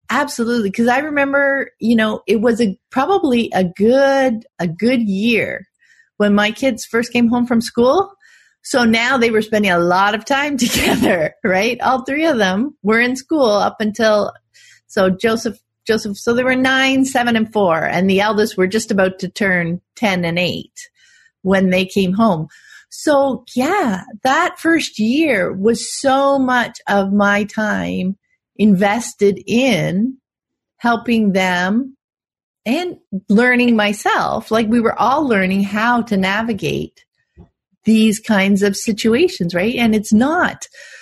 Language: English